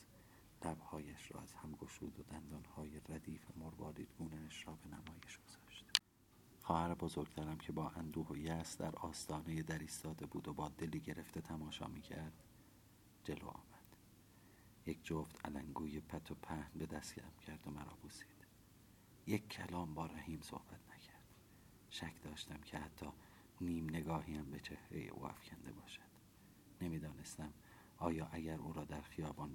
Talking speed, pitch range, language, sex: 135 wpm, 80-105 Hz, Persian, male